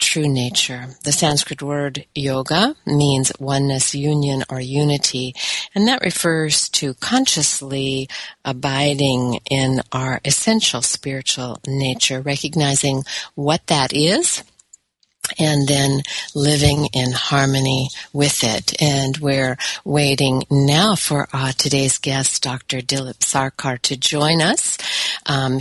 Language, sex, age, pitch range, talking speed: English, female, 50-69, 130-155 Hz, 110 wpm